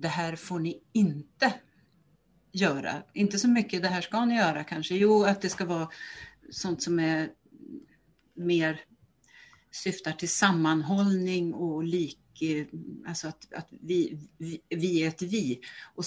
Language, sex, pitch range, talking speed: Swedish, female, 160-200 Hz, 145 wpm